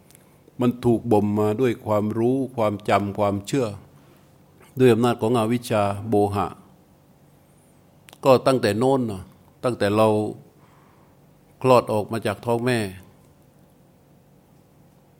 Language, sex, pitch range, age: Thai, male, 100-125 Hz, 60-79